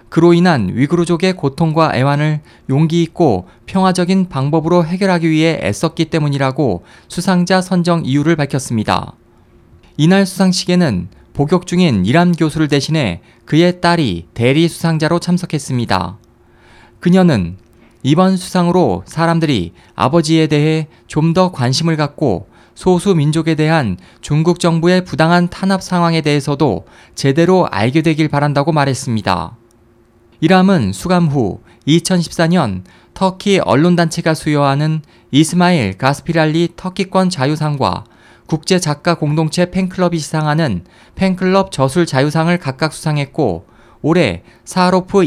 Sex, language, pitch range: male, Korean, 130-175 Hz